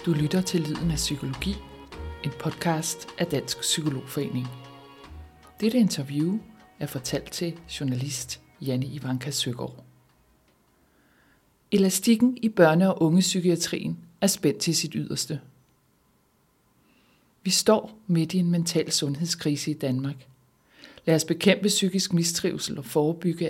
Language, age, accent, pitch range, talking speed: Danish, 60-79, native, 140-175 Hz, 115 wpm